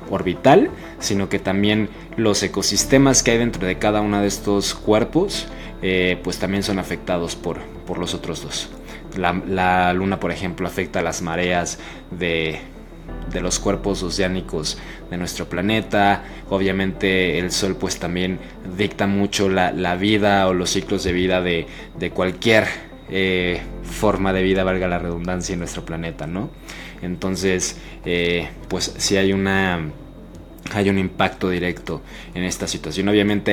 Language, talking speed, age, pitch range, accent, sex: Spanish, 150 wpm, 20-39, 90-100 Hz, Mexican, male